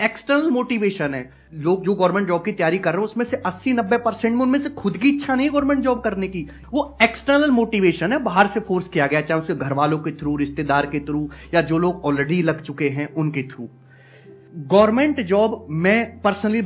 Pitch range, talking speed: 160-225 Hz, 200 wpm